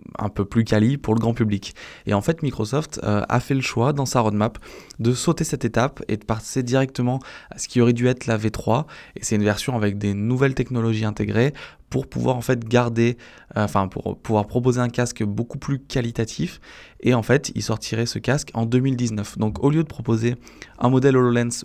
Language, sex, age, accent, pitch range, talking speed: French, male, 20-39, French, 105-130 Hz, 215 wpm